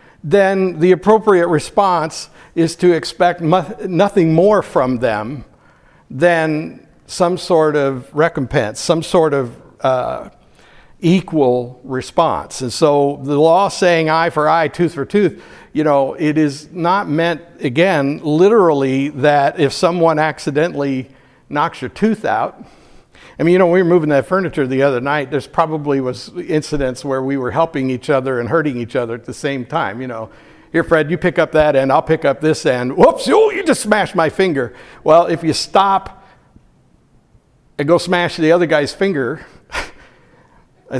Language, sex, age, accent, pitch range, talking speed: English, male, 60-79, American, 135-175 Hz, 165 wpm